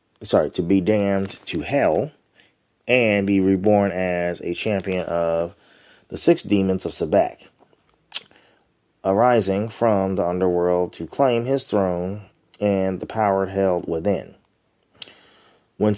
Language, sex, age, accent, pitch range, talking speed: English, male, 30-49, American, 95-105 Hz, 120 wpm